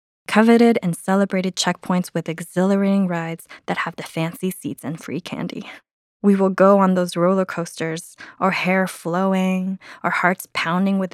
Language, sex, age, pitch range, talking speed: English, female, 20-39, 185-215 Hz, 155 wpm